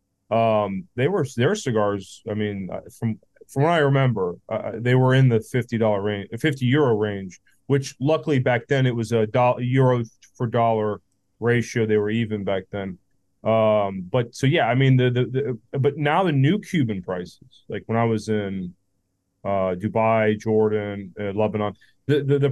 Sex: male